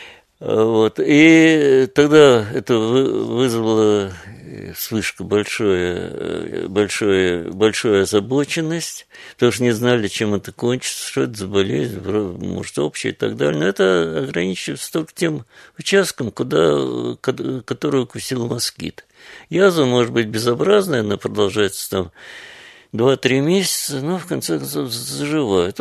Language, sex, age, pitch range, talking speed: Russian, male, 60-79, 100-150 Hz, 110 wpm